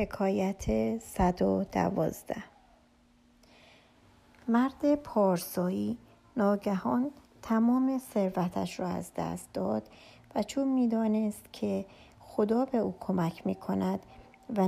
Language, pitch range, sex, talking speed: Persian, 185-220 Hz, male, 90 wpm